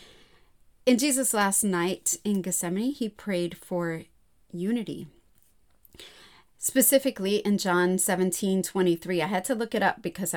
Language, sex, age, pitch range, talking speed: English, female, 30-49, 175-250 Hz, 125 wpm